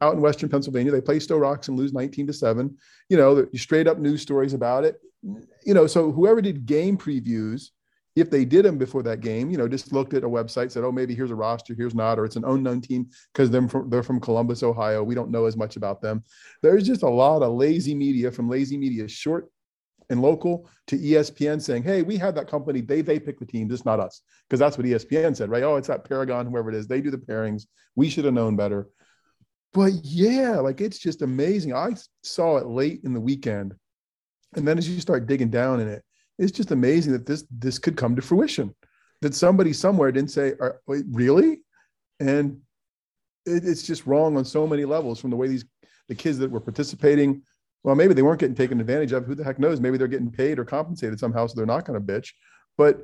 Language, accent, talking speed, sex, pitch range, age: English, American, 225 wpm, male, 120-150 Hz, 40-59